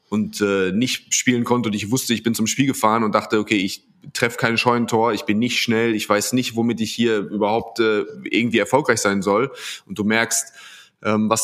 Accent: German